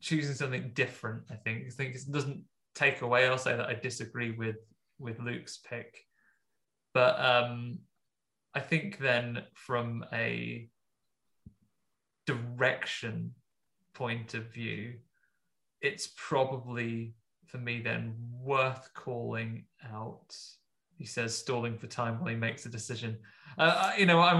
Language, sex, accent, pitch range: English, male, British, 115-135 Hz